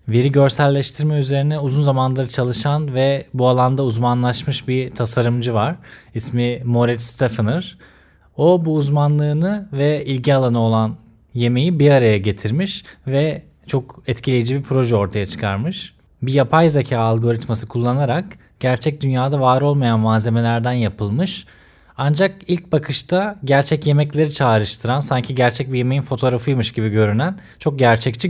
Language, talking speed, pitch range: Turkish, 125 wpm, 115-145 Hz